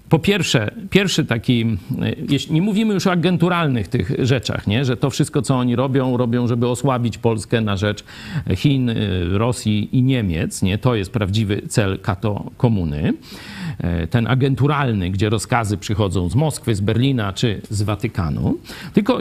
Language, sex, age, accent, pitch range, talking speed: Polish, male, 50-69, native, 125-190 Hz, 140 wpm